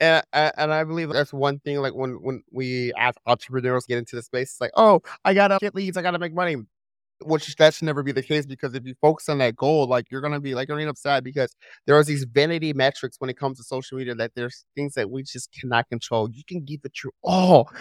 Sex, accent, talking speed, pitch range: male, American, 275 wpm, 130-155 Hz